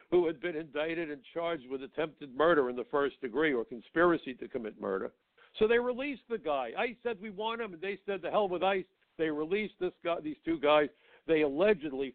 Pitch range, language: 125-175 Hz, English